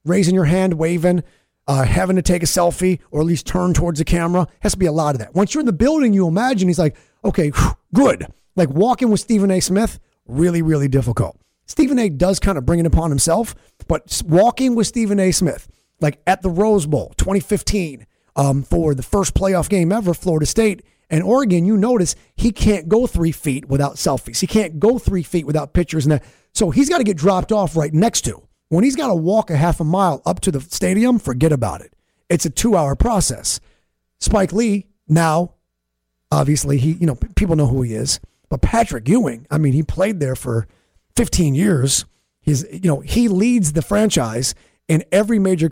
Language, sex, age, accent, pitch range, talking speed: English, male, 30-49, American, 150-200 Hz, 205 wpm